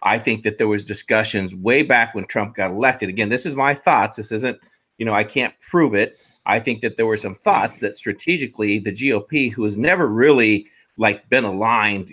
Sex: male